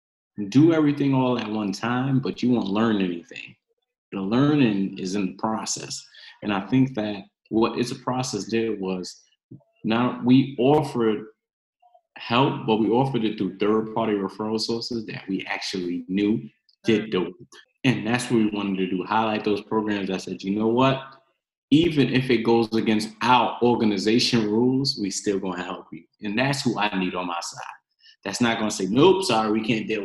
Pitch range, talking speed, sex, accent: 95-120 Hz, 180 wpm, male, American